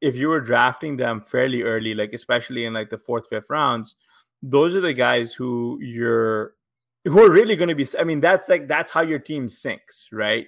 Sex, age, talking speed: male, 20-39, 205 wpm